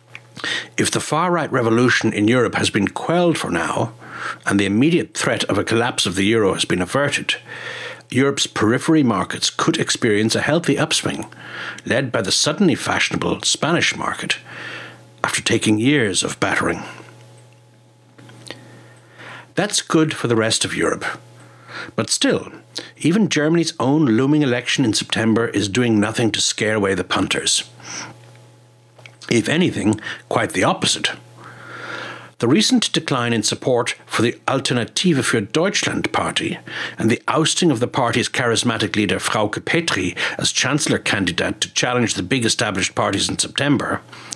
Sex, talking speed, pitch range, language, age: male, 140 wpm, 95-135 Hz, English, 60-79